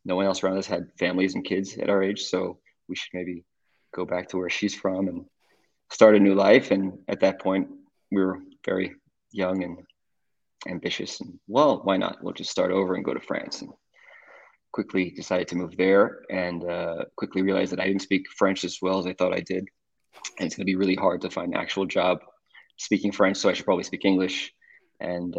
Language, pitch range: English, 90-100 Hz